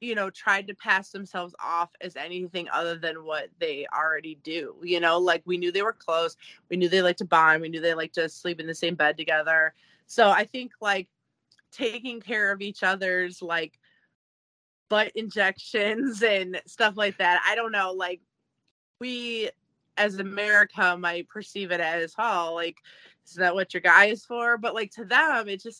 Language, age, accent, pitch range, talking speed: English, 20-39, American, 170-210 Hz, 190 wpm